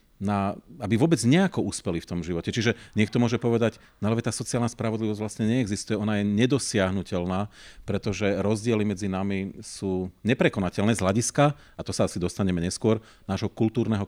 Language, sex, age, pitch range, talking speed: Slovak, male, 40-59, 95-115 Hz, 160 wpm